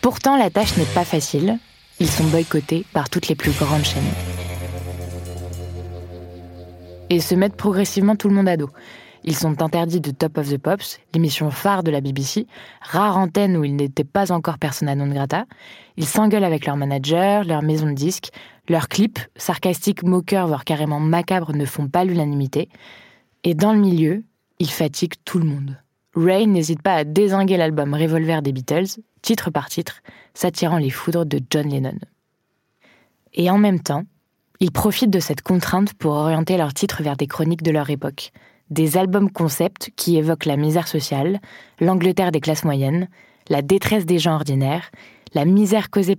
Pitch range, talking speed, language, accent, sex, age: 145-185 Hz, 175 wpm, French, French, female, 20-39